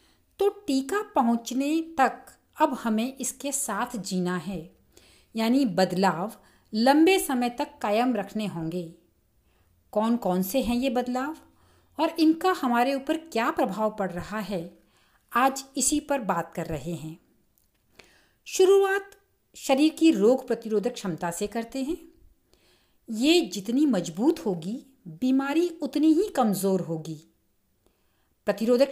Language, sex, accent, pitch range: Hindi, female, native, 195-285 Hz